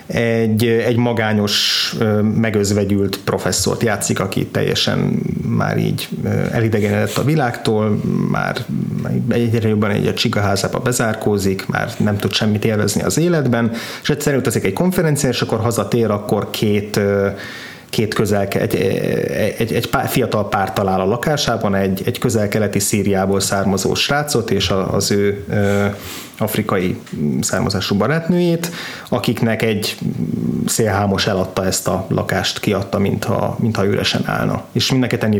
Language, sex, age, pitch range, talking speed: Hungarian, male, 30-49, 100-125 Hz, 125 wpm